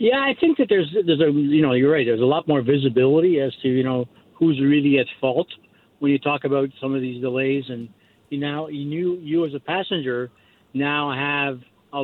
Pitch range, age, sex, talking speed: 135-160 Hz, 60-79, male, 215 wpm